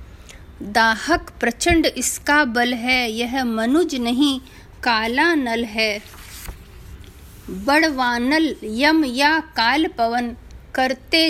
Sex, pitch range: female, 230-295 Hz